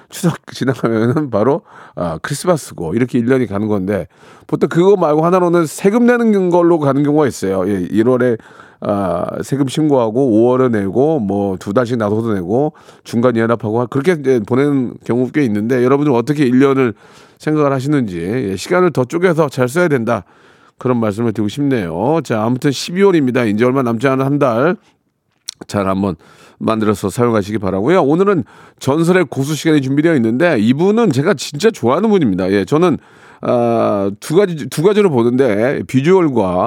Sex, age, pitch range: male, 40-59, 110-155 Hz